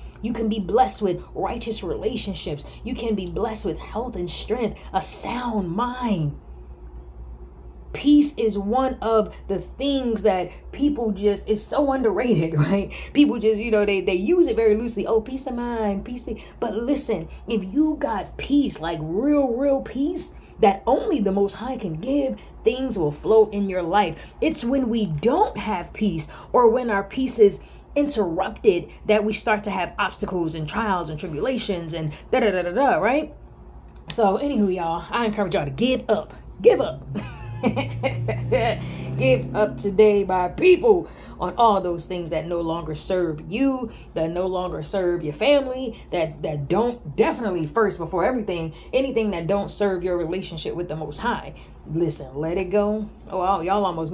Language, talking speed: English, 170 wpm